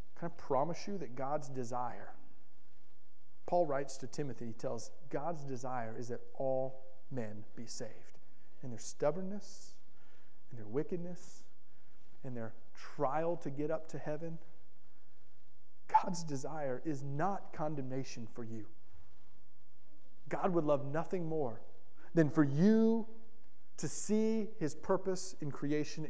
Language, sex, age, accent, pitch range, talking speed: English, male, 40-59, American, 115-160 Hz, 125 wpm